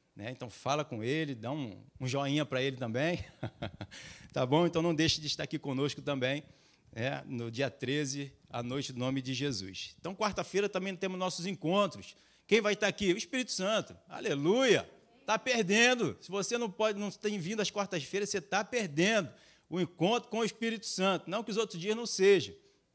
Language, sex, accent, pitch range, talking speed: Portuguese, male, Brazilian, 145-185 Hz, 185 wpm